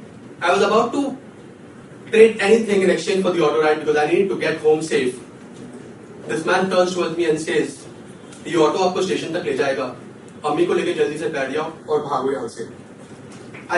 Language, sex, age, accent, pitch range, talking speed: Hindi, male, 30-49, native, 150-210 Hz, 195 wpm